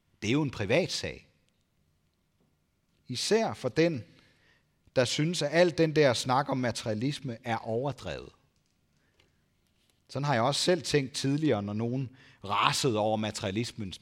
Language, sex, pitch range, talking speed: Danish, male, 95-140 Hz, 135 wpm